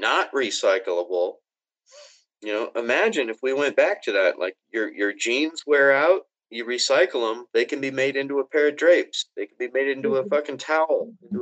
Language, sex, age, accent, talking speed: English, male, 40-59, American, 200 wpm